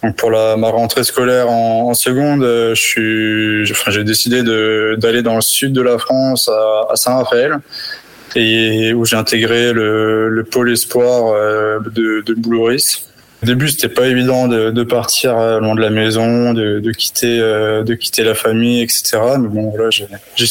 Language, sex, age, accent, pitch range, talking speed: French, male, 20-39, French, 110-120 Hz, 185 wpm